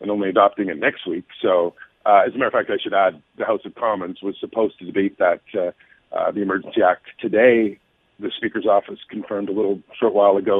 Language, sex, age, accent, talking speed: English, male, 50-69, American, 225 wpm